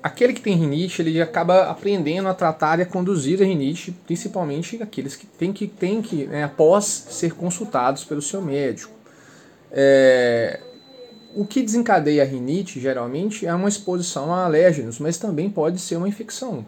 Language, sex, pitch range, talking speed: Portuguese, male, 140-195 Hz, 165 wpm